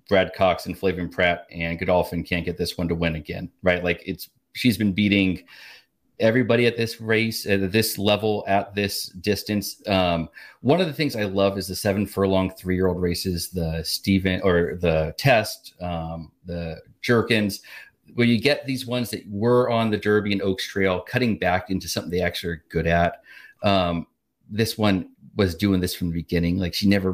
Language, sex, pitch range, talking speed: English, male, 90-120 Hz, 190 wpm